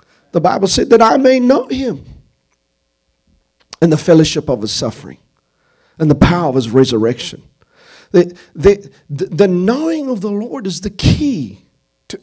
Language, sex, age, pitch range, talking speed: English, male, 50-69, 145-210 Hz, 155 wpm